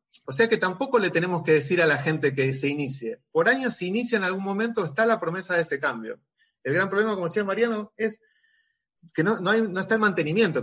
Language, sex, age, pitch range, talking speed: Spanish, male, 30-49, 145-215 Hz, 245 wpm